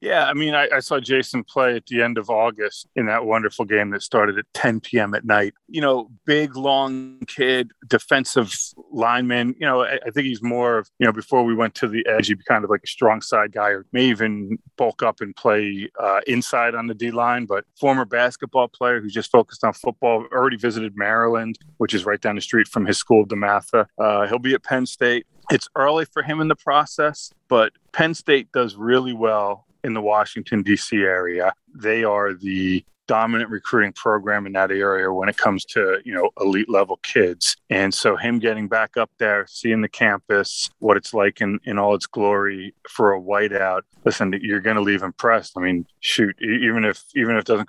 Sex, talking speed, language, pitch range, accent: male, 210 wpm, English, 105-125 Hz, American